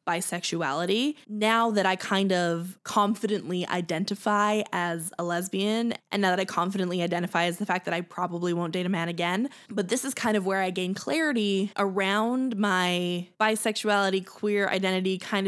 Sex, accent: female, American